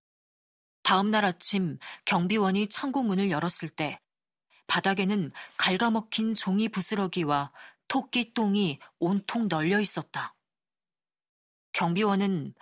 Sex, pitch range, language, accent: female, 175-225 Hz, Korean, native